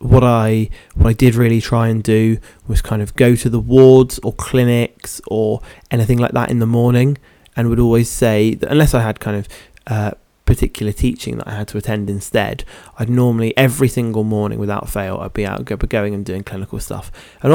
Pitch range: 105-125 Hz